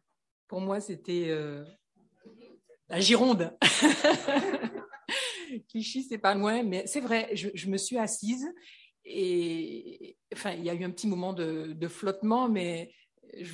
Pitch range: 180-225 Hz